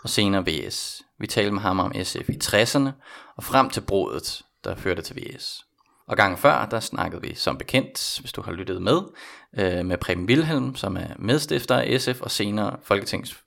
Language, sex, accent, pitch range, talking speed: Danish, male, native, 95-130 Hz, 190 wpm